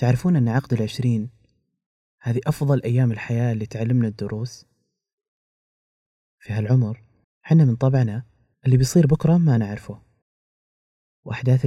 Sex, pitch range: male, 110-130 Hz